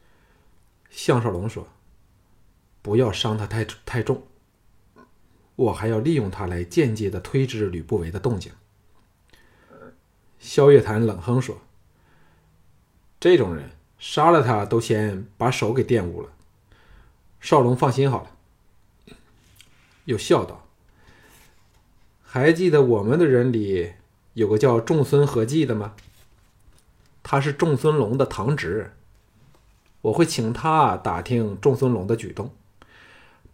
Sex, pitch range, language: male, 100-140 Hz, Chinese